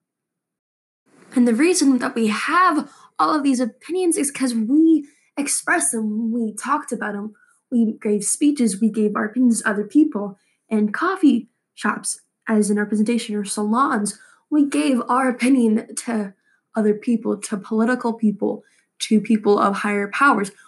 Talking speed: 155 wpm